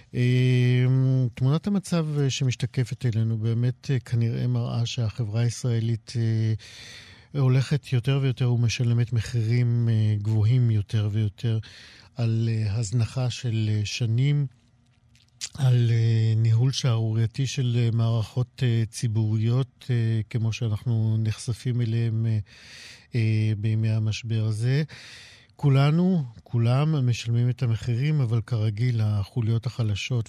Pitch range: 110-125 Hz